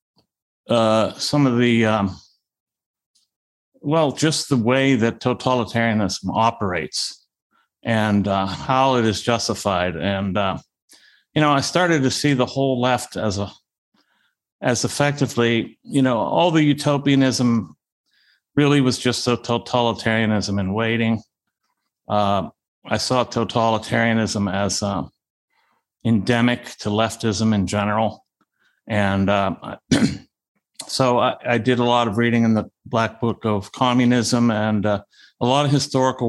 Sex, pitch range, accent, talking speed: male, 105-125 Hz, American, 130 wpm